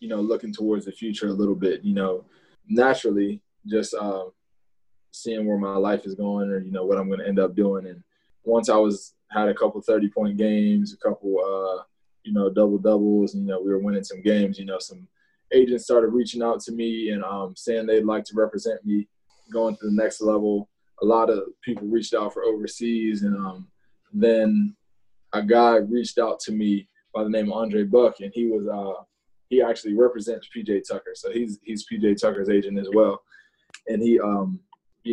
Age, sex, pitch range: 20-39, male, 100-110 Hz